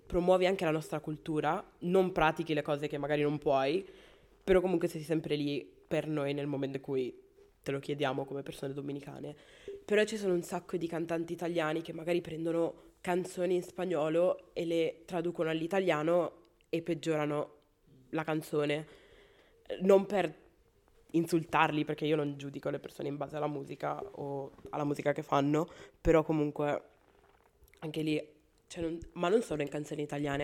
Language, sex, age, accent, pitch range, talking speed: Italian, female, 20-39, native, 145-170 Hz, 160 wpm